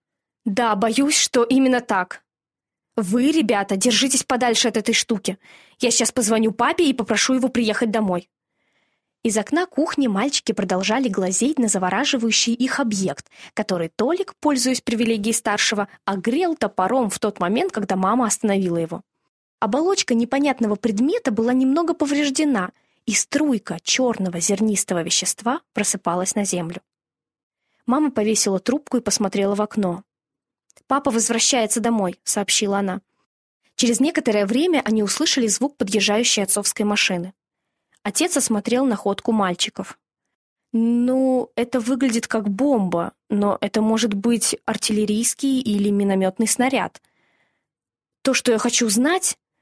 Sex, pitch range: female, 205-260 Hz